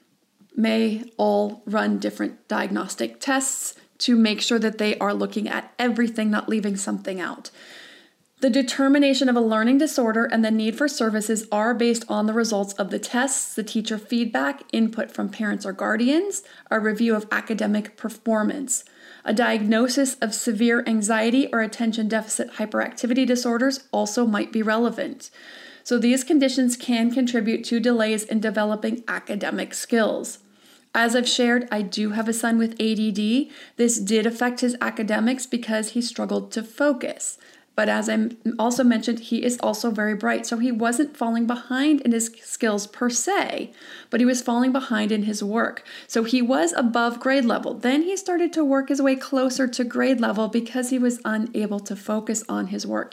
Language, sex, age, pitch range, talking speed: English, female, 30-49, 220-260 Hz, 170 wpm